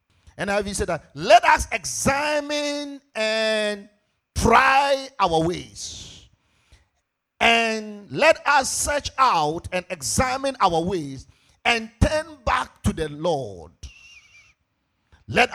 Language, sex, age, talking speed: English, male, 50-69, 110 wpm